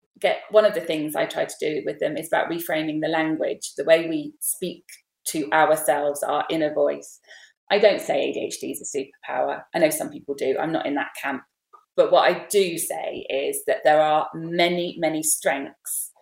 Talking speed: 200 wpm